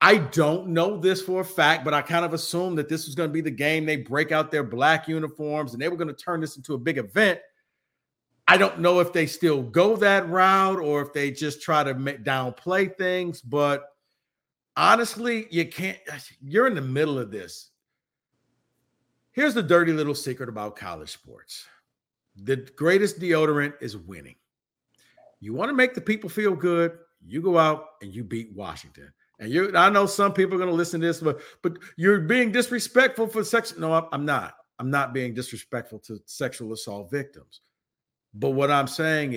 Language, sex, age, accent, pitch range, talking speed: English, male, 50-69, American, 140-180 Hz, 190 wpm